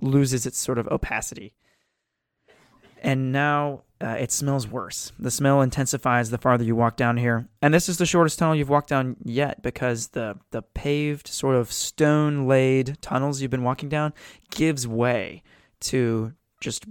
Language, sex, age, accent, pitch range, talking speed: English, male, 20-39, American, 120-140 Hz, 165 wpm